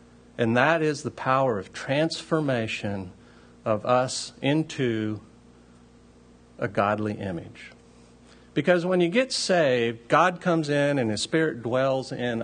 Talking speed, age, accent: 125 wpm, 50-69, American